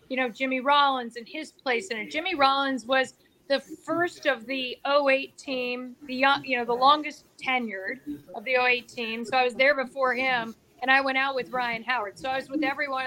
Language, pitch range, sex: English, 245-285 Hz, female